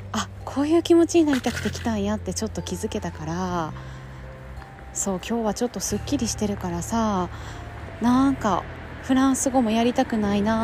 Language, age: Japanese, 20-39